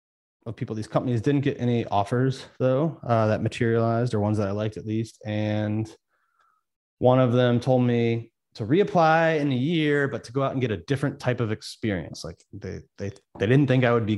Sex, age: male, 30-49